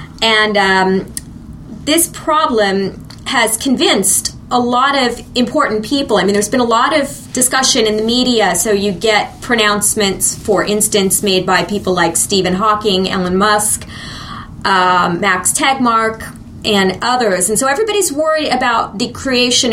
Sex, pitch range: female, 185-235 Hz